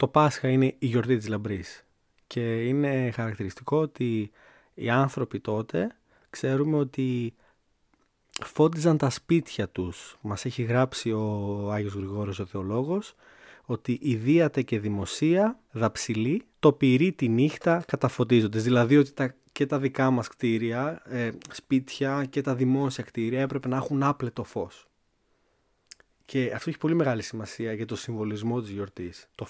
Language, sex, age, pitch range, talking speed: Greek, male, 20-39, 110-140 Hz, 140 wpm